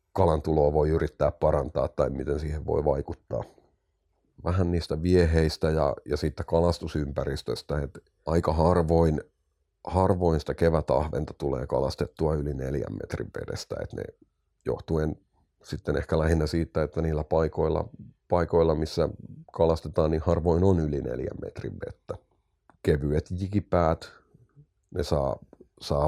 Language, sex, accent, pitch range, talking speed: Finnish, male, native, 75-85 Hz, 115 wpm